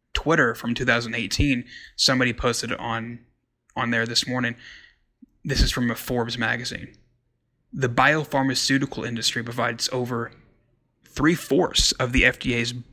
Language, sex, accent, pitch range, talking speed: English, male, American, 115-125 Hz, 115 wpm